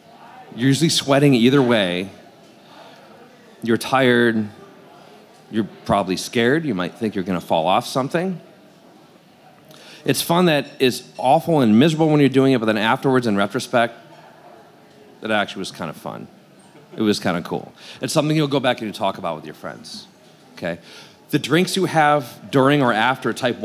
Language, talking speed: English, 165 wpm